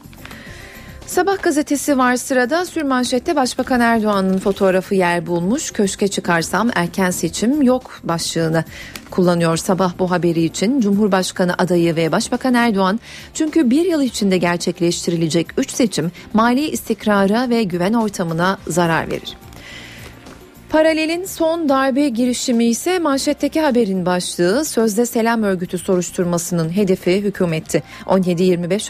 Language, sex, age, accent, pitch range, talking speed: Turkish, female, 40-59, native, 175-230 Hz, 115 wpm